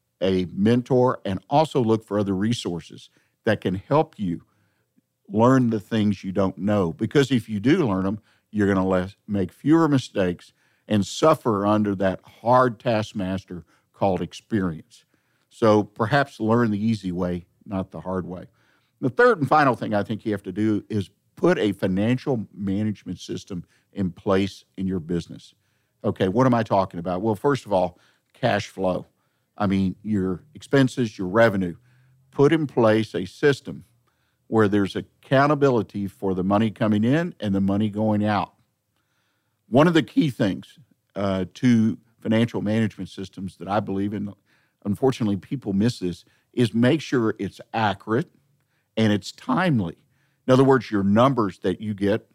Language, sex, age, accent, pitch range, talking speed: English, male, 50-69, American, 95-125 Hz, 160 wpm